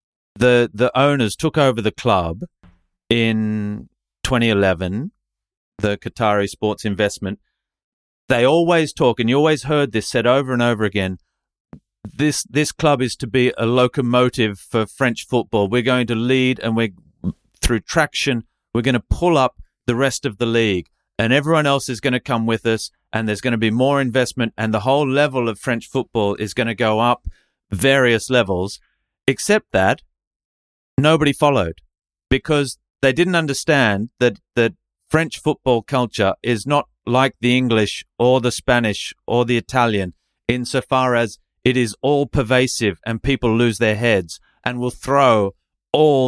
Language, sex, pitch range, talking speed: English, male, 110-130 Hz, 160 wpm